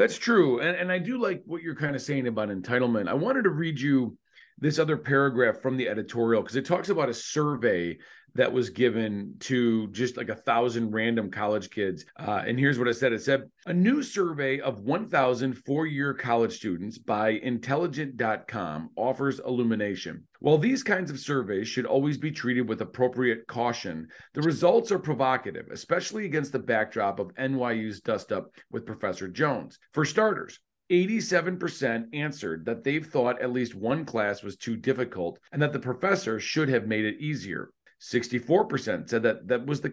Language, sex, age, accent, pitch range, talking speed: English, male, 40-59, American, 115-150 Hz, 175 wpm